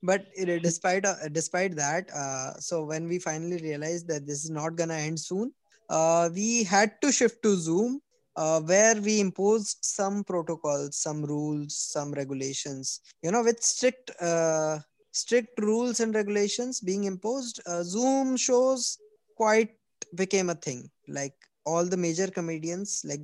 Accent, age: Indian, 20-39